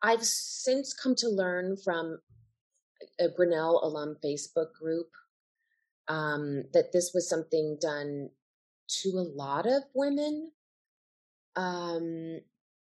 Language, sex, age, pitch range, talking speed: English, female, 30-49, 155-205 Hz, 105 wpm